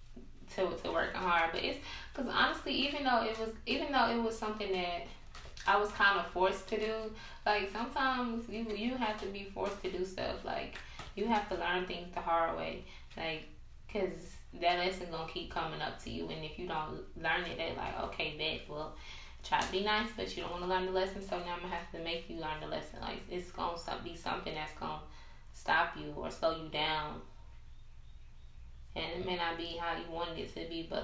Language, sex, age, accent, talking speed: English, female, 10-29, American, 220 wpm